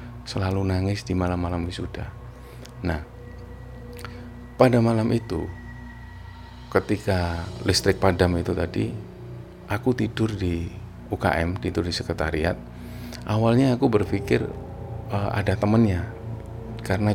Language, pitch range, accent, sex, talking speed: Indonesian, 90-115 Hz, native, male, 100 wpm